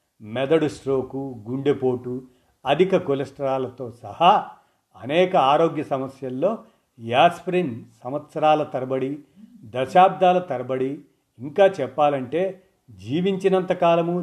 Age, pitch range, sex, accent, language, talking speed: 50-69, 125-170 Hz, male, native, Telugu, 70 wpm